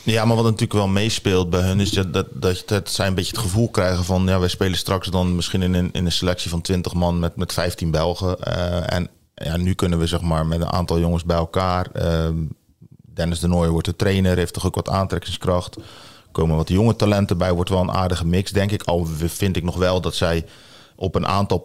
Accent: Dutch